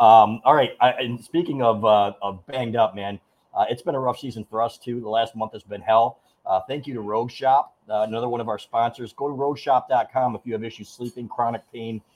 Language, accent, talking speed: English, American, 240 wpm